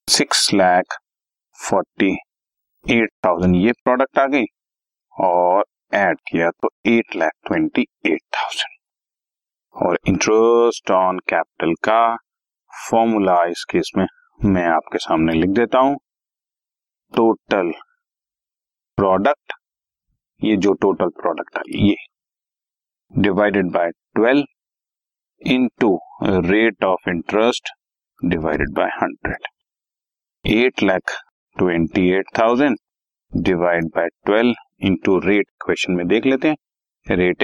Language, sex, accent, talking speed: Hindi, male, native, 105 wpm